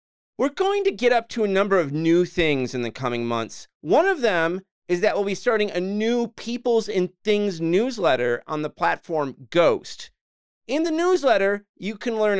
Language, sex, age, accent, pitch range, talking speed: English, male, 30-49, American, 130-215 Hz, 190 wpm